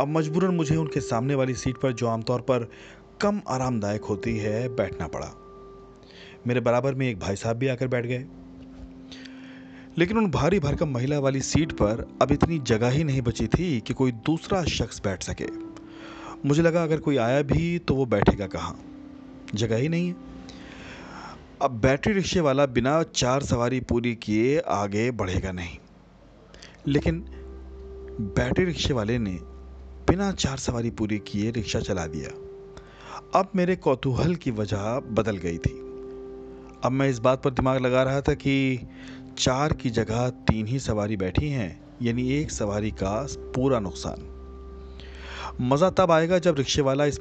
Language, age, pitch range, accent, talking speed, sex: Hindi, 30-49, 105-145 Hz, native, 160 wpm, male